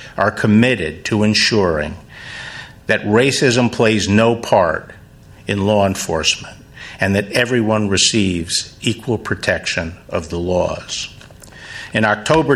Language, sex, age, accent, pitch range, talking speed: English, male, 50-69, American, 100-125 Hz, 110 wpm